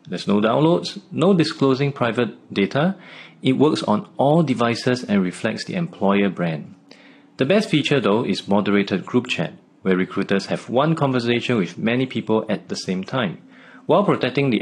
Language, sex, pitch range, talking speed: English, male, 100-140 Hz, 165 wpm